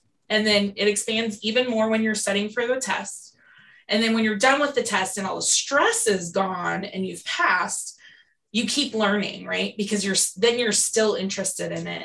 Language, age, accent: English, 20-39, American